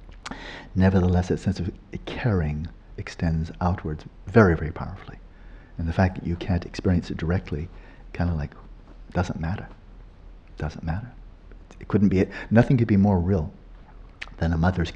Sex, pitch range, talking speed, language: male, 85-105 Hz, 155 wpm, English